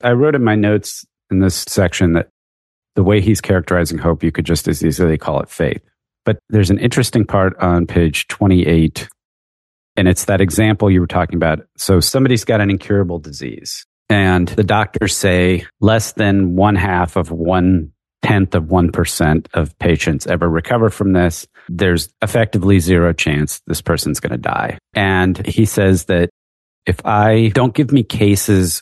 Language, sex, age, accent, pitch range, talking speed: English, male, 40-59, American, 85-110 Hz, 170 wpm